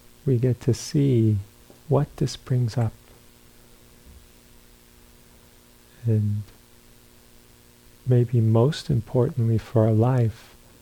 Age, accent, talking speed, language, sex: 50-69, American, 85 wpm, English, male